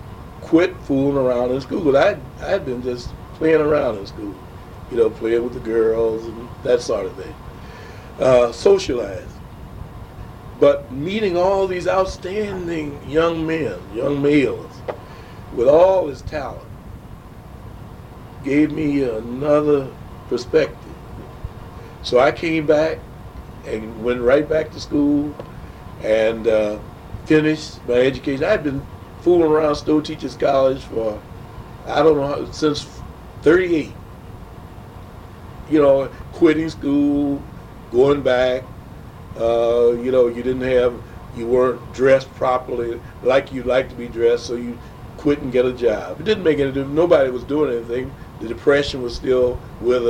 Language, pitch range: English, 120-150 Hz